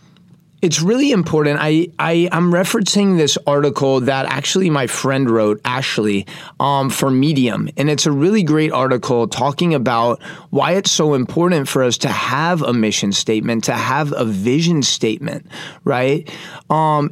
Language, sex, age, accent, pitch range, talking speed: English, male, 30-49, American, 130-170 Hz, 145 wpm